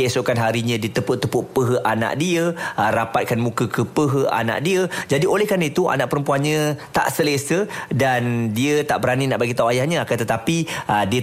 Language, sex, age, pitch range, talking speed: Malay, male, 30-49, 115-145 Hz, 150 wpm